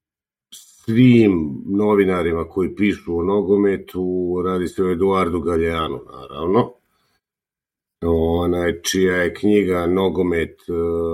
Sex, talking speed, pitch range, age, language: male, 95 wpm, 90-110 Hz, 50-69, Croatian